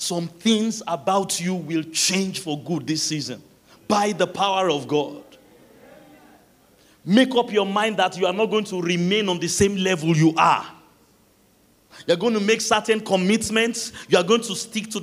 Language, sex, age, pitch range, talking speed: English, male, 40-59, 130-200 Hz, 180 wpm